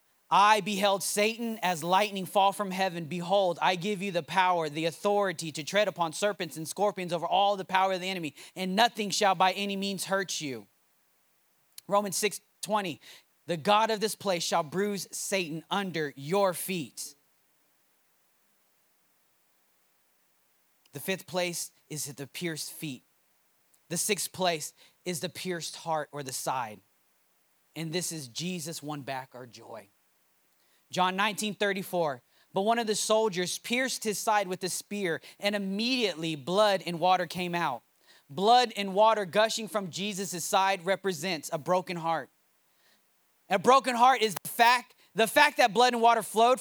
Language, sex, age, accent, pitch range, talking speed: English, male, 20-39, American, 170-220 Hz, 155 wpm